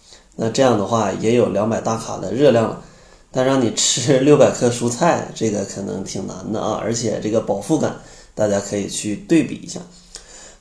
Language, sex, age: Chinese, male, 20-39